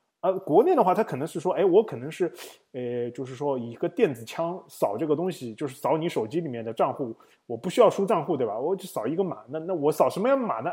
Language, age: Chinese, 20-39